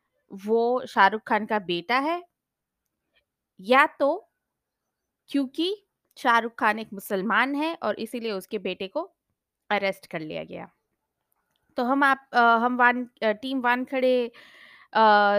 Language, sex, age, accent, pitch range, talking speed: Hindi, female, 20-39, native, 195-255 Hz, 135 wpm